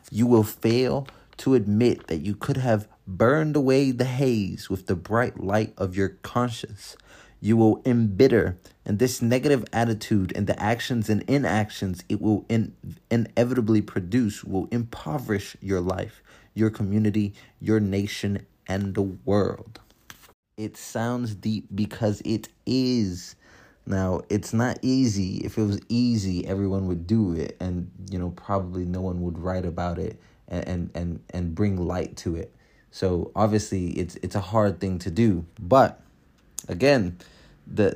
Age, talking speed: 30-49, 150 wpm